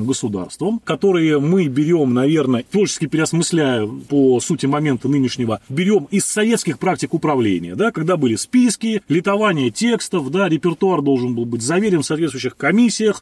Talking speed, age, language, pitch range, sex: 140 wpm, 30-49, Russian, 135-185 Hz, male